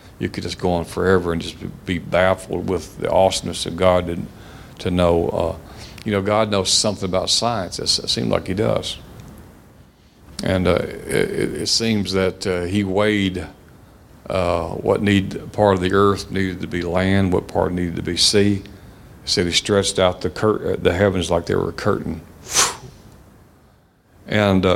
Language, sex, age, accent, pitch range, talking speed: English, male, 50-69, American, 90-100 Hz, 160 wpm